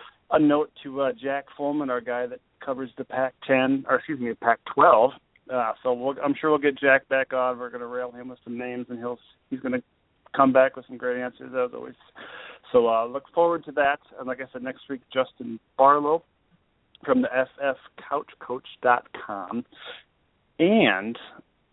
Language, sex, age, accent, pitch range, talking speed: English, male, 40-59, American, 125-150 Hz, 180 wpm